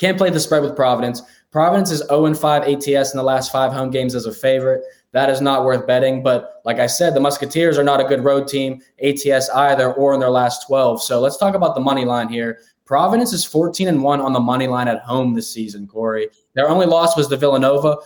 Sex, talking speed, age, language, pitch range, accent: male, 230 wpm, 10-29, English, 125-155 Hz, American